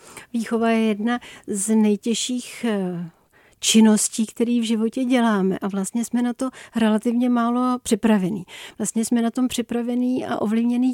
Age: 40-59